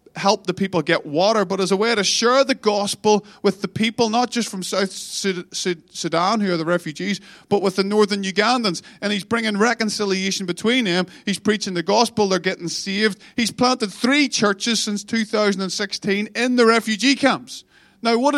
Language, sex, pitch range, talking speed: English, male, 195-235 Hz, 180 wpm